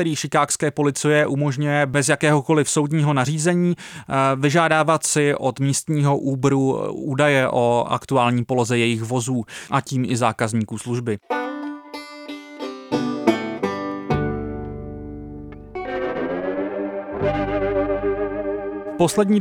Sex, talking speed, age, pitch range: male, 75 wpm, 30-49, 130-165 Hz